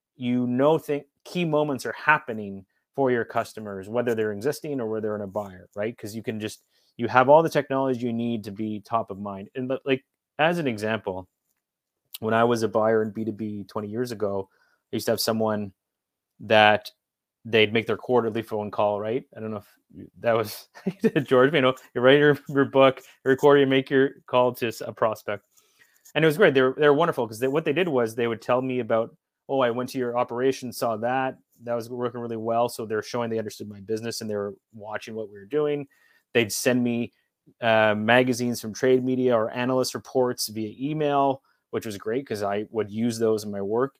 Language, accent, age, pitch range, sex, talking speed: English, American, 30-49, 110-135 Hz, male, 215 wpm